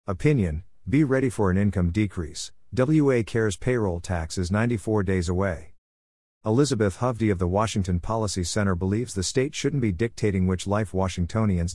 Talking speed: 160 wpm